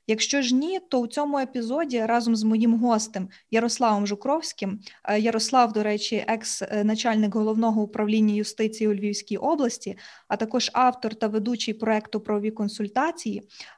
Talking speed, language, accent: 135 wpm, Ukrainian, native